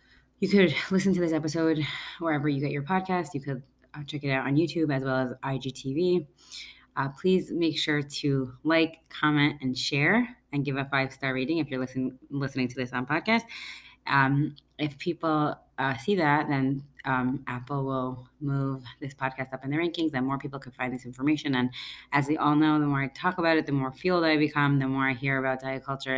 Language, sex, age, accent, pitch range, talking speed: English, female, 20-39, American, 135-155 Hz, 210 wpm